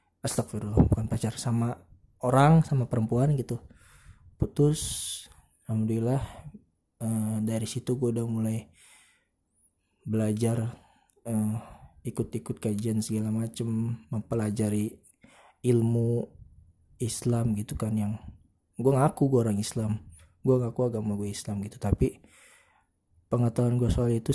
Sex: male